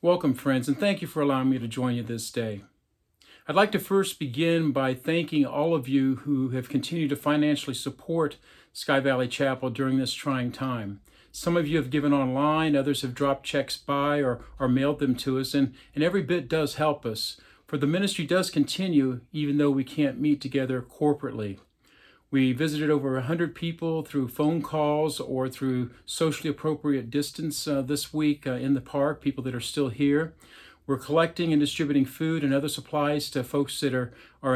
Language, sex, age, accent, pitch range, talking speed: English, male, 50-69, American, 130-155 Hz, 190 wpm